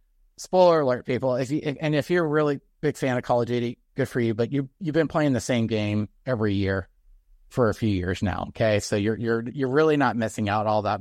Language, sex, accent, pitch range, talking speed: English, male, American, 105-145 Hz, 245 wpm